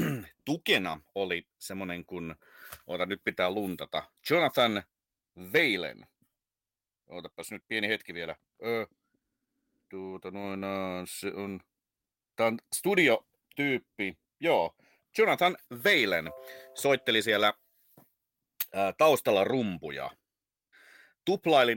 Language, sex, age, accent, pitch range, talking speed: Finnish, male, 40-59, native, 95-140 Hz, 85 wpm